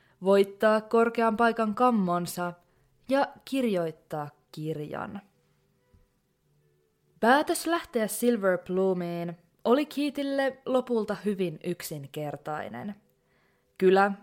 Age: 20-39